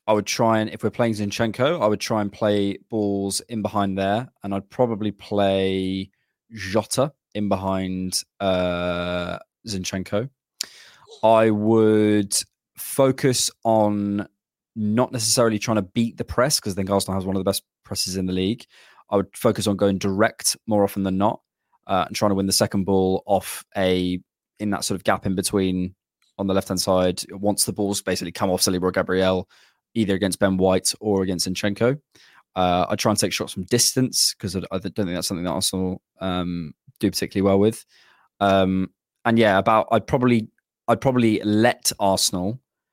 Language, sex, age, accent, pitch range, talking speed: English, male, 20-39, British, 95-110 Hz, 180 wpm